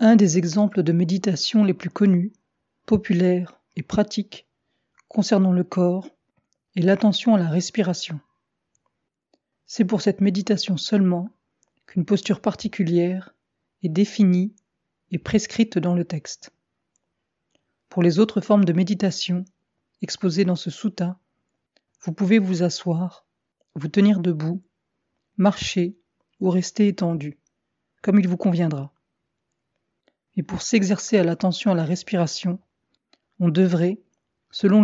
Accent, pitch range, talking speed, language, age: French, 175-205 Hz, 120 wpm, French, 40-59